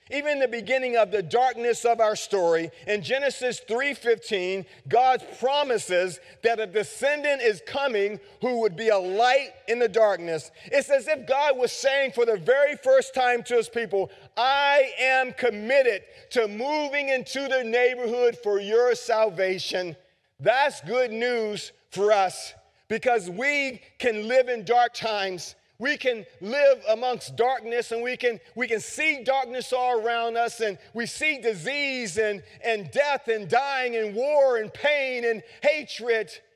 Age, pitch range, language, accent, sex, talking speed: 40-59, 220-265 Hz, English, American, male, 155 wpm